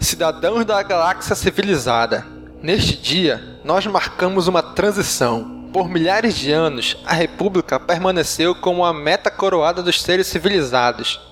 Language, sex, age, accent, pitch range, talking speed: Portuguese, male, 20-39, Brazilian, 145-195 Hz, 125 wpm